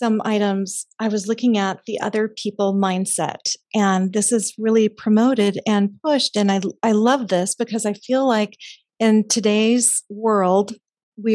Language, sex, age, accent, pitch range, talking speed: English, female, 40-59, American, 200-240 Hz, 160 wpm